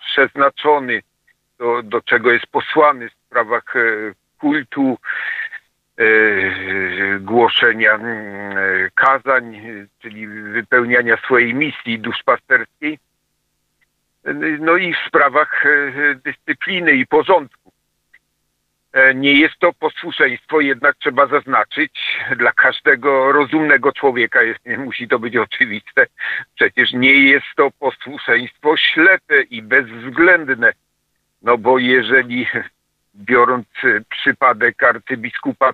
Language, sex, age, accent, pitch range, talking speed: Polish, male, 50-69, native, 115-150 Hz, 90 wpm